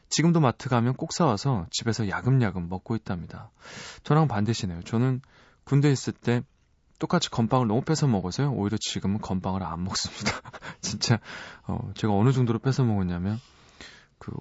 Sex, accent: male, native